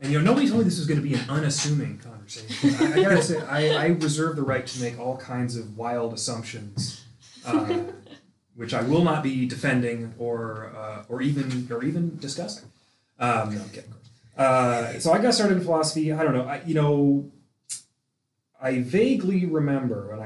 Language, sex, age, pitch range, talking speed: English, male, 30-49, 115-150 Hz, 185 wpm